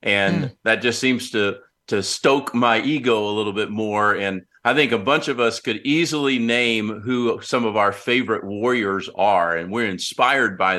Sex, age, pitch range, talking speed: male, 50-69, 100-125 Hz, 190 wpm